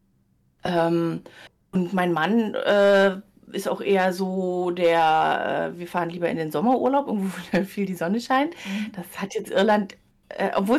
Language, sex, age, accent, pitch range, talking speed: German, female, 30-49, German, 185-230 Hz, 155 wpm